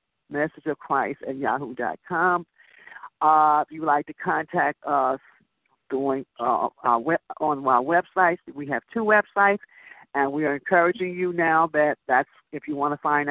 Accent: American